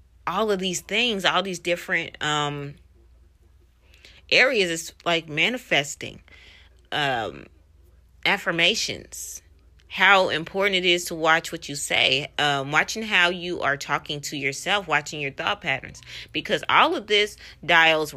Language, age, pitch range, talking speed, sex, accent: English, 30-49, 125-180 Hz, 130 wpm, female, American